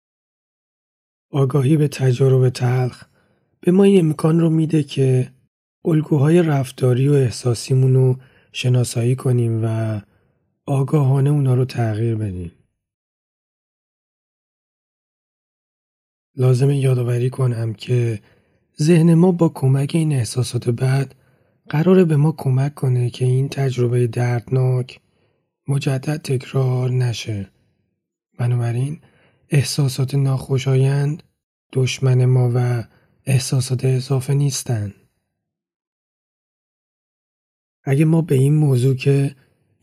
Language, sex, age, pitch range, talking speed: Persian, male, 30-49, 125-140 Hz, 90 wpm